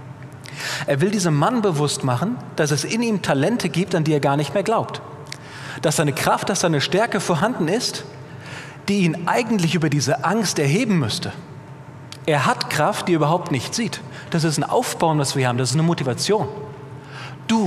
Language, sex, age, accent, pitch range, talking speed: German, male, 40-59, German, 135-160 Hz, 185 wpm